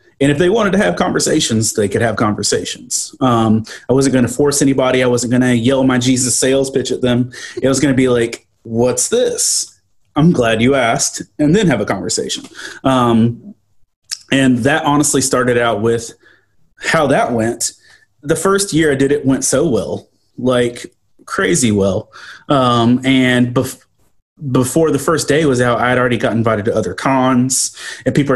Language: English